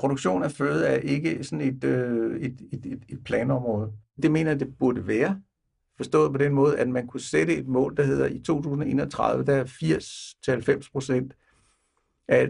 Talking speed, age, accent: 180 wpm, 60-79, native